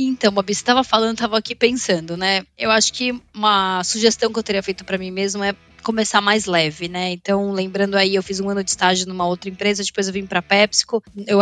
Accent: Brazilian